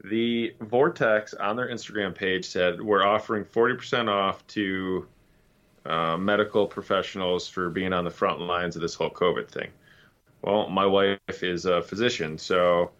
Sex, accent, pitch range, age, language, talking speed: male, American, 95-105 Hz, 20-39, English, 150 wpm